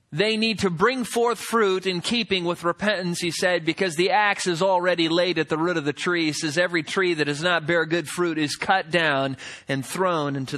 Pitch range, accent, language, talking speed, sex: 160-220 Hz, American, English, 220 wpm, male